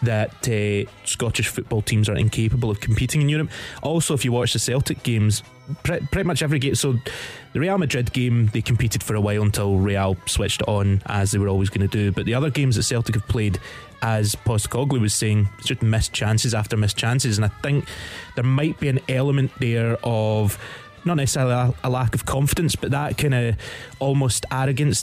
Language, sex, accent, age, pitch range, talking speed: English, male, British, 20-39, 105-125 Hz, 205 wpm